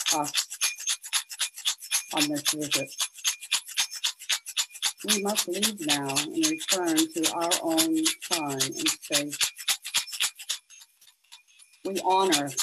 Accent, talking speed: American, 85 wpm